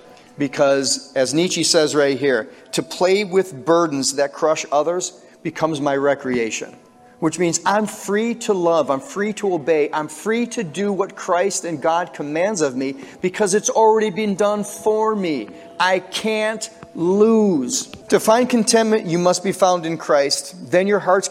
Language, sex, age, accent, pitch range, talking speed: English, male, 40-59, American, 135-180 Hz, 165 wpm